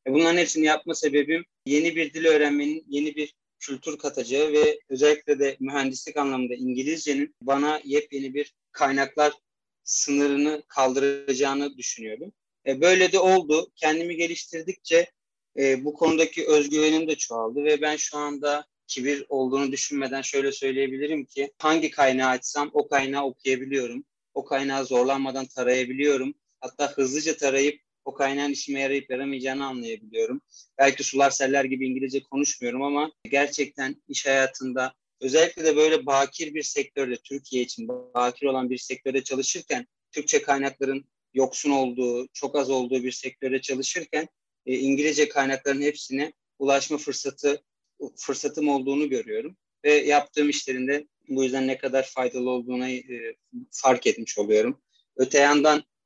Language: Turkish